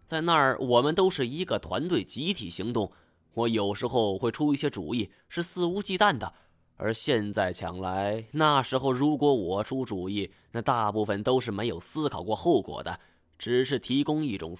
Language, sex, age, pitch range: Chinese, male, 20-39, 100-145 Hz